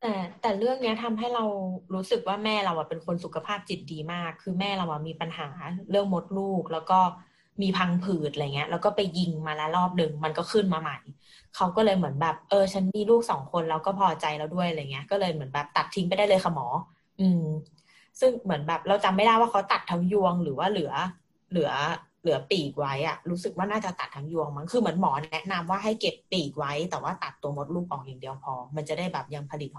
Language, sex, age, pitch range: Thai, female, 20-39, 150-190 Hz